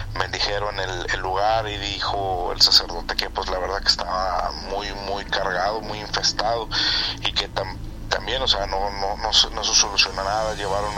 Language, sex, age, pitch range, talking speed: Spanish, male, 30-49, 100-110 Hz, 200 wpm